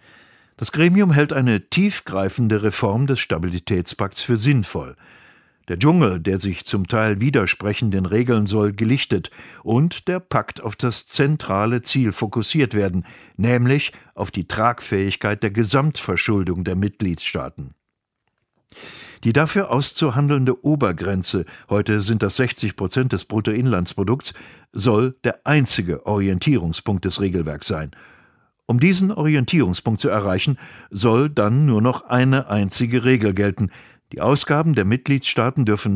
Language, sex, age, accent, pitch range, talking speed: German, male, 50-69, German, 100-135 Hz, 120 wpm